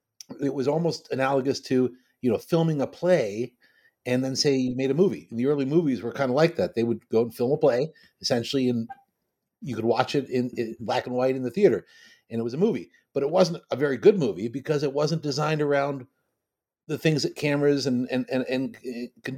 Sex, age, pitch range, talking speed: male, 50-69, 125-165 Hz, 225 wpm